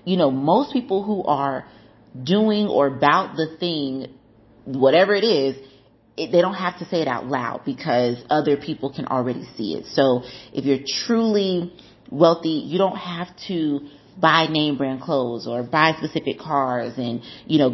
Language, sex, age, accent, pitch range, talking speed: English, female, 30-49, American, 135-180 Hz, 170 wpm